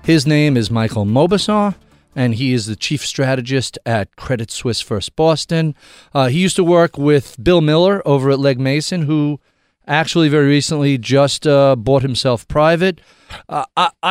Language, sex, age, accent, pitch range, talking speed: English, male, 40-59, American, 120-155 Hz, 160 wpm